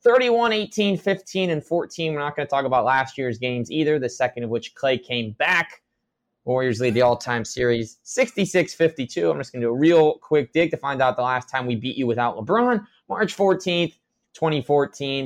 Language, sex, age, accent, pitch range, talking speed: English, male, 20-39, American, 125-160 Hz, 210 wpm